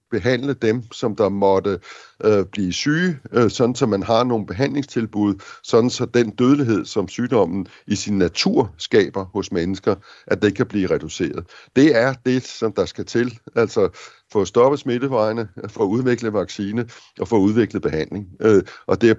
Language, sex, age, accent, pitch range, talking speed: Danish, male, 60-79, native, 100-125 Hz, 170 wpm